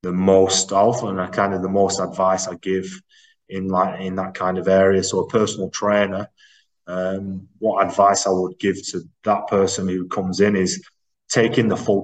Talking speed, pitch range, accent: 195 wpm, 95-105 Hz, British